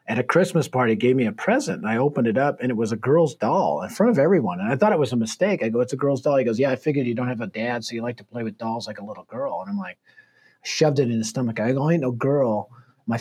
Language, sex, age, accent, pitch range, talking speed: English, male, 40-59, American, 120-165 Hz, 325 wpm